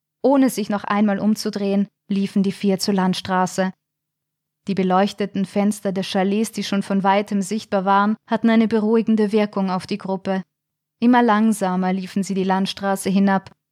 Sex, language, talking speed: female, German, 155 wpm